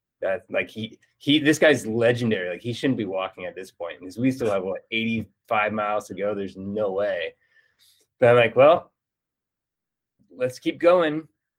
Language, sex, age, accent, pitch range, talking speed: English, male, 20-39, American, 105-130 Hz, 175 wpm